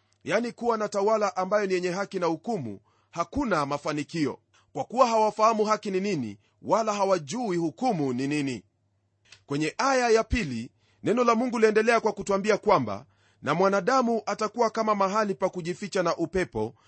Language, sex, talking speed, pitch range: Swahili, male, 155 wpm, 140-215 Hz